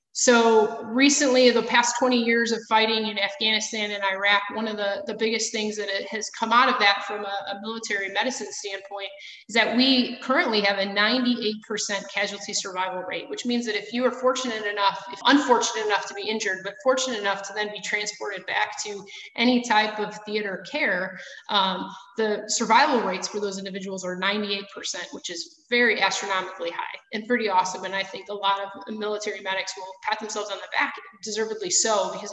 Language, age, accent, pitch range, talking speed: English, 30-49, American, 195-230 Hz, 190 wpm